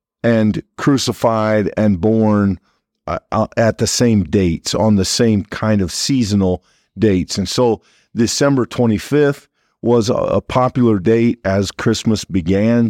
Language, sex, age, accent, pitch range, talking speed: English, male, 50-69, American, 100-120 Hz, 125 wpm